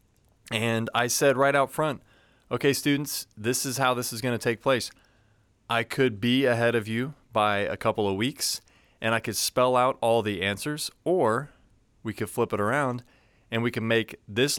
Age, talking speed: 30-49, 195 wpm